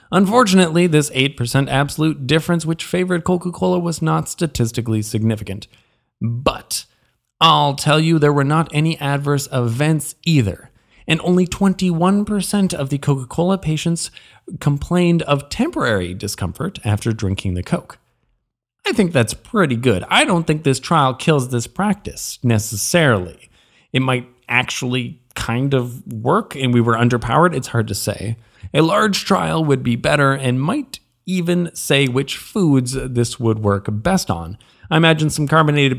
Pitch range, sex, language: 120-170 Hz, male, English